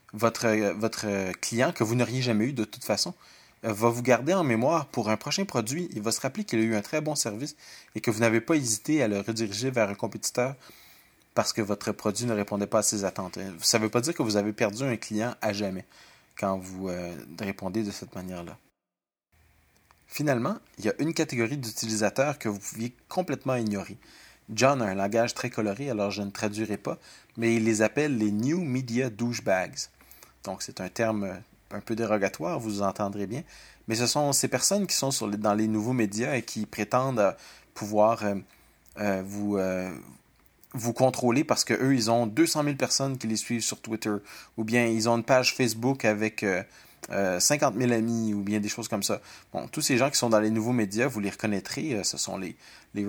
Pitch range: 105-125 Hz